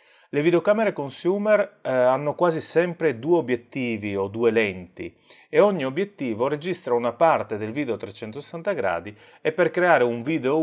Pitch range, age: 115-175 Hz, 30-49